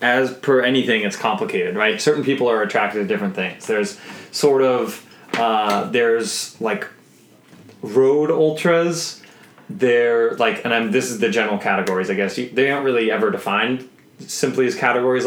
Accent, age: American, 20-39